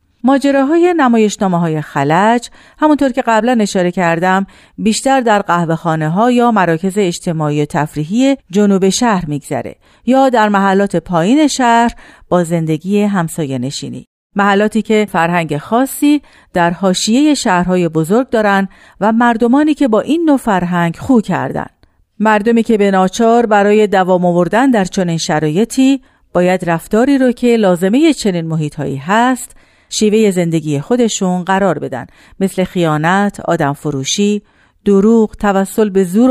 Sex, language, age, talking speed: female, Persian, 50-69, 125 wpm